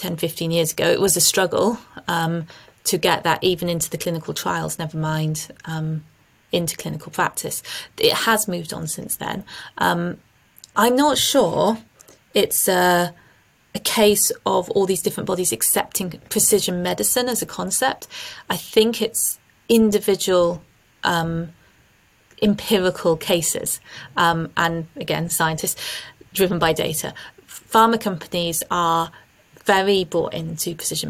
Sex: female